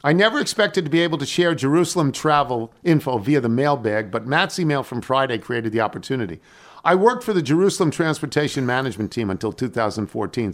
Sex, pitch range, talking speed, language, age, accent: male, 110-145 Hz, 180 wpm, English, 50-69, American